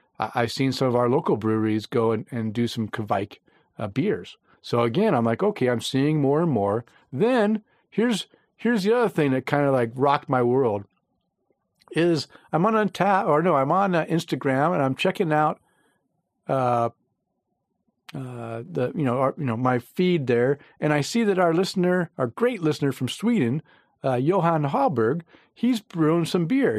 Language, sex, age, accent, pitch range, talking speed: English, male, 50-69, American, 125-165 Hz, 180 wpm